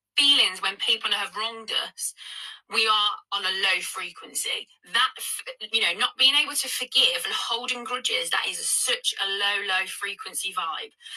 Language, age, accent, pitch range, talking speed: English, 20-39, British, 200-270 Hz, 165 wpm